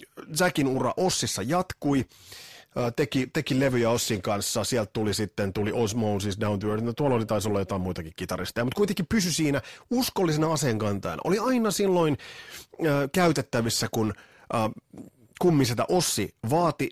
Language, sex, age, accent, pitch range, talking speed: Finnish, male, 30-49, native, 105-145 Hz, 140 wpm